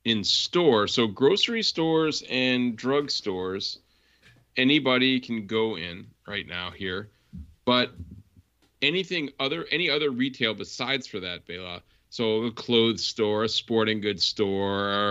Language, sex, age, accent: English, male, 40-59, American